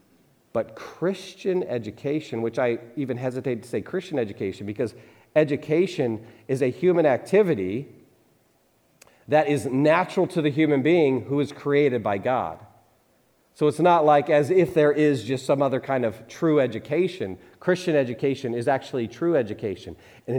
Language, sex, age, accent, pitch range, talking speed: English, male, 40-59, American, 120-165 Hz, 150 wpm